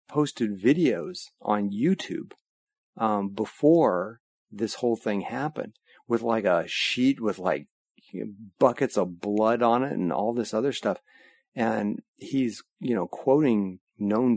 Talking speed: 135 wpm